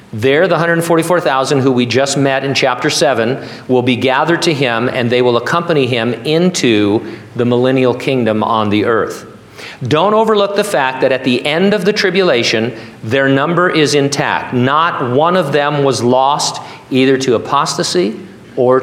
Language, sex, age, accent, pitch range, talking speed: English, male, 40-59, American, 115-135 Hz, 165 wpm